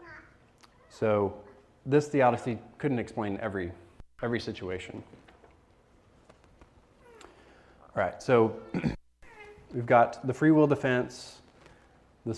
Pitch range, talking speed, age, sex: 105-125 Hz, 80 wpm, 30-49, male